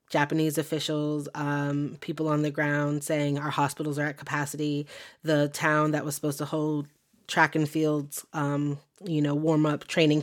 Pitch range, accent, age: 145-155 Hz, American, 20-39